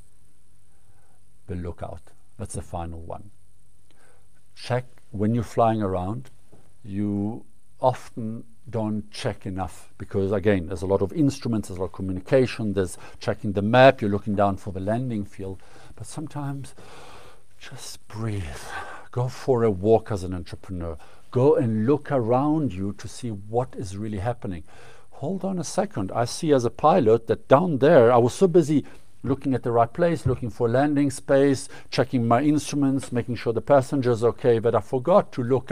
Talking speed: 170 wpm